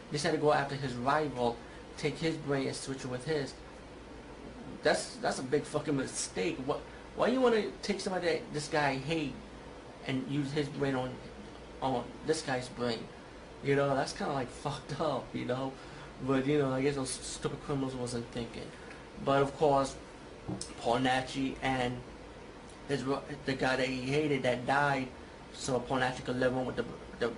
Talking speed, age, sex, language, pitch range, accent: 180 wpm, 30-49, male, English, 130-145 Hz, American